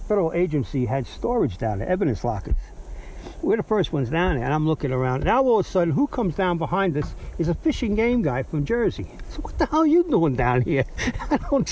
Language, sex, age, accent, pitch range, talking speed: English, male, 60-79, American, 130-180 Hz, 235 wpm